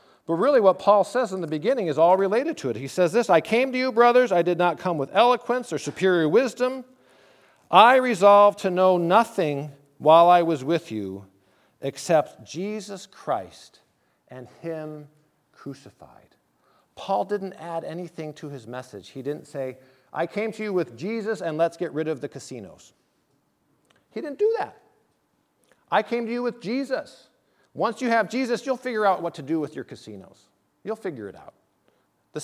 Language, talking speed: English, 180 wpm